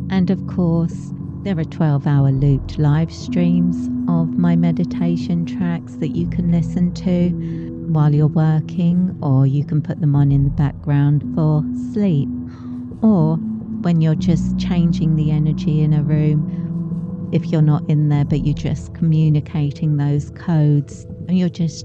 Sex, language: female, English